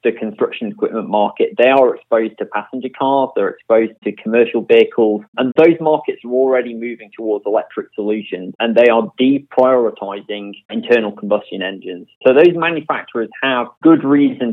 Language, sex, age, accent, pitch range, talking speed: English, male, 30-49, British, 110-140 Hz, 155 wpm